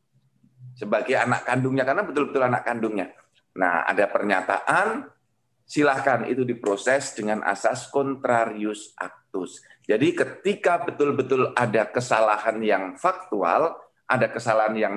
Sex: male